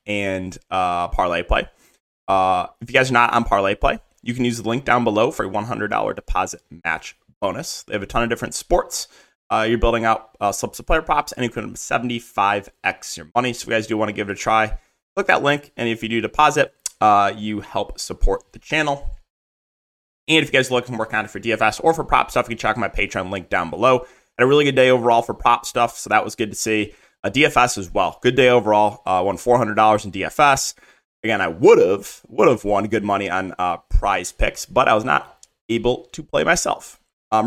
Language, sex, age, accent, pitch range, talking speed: English, male, 20-39, American, 105-125 Hz, 235 wpm